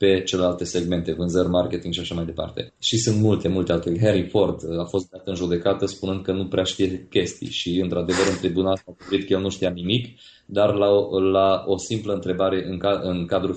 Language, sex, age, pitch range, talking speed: Romanian, male, 20-39, 90-100 Hz, 205 wpm